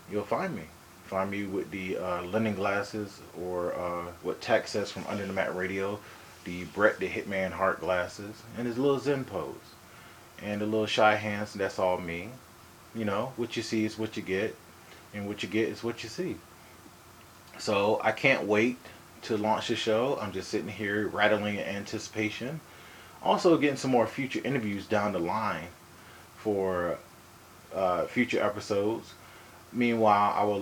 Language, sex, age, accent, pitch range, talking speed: English, male, 30-49, American, 90-110 Hz, 170 wpm